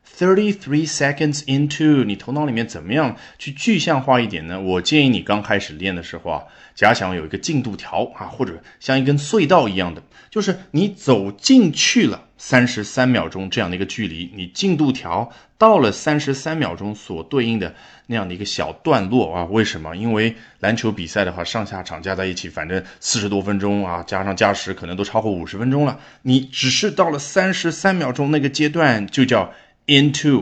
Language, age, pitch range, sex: Chinese, 20-39, 95-140 Hz, male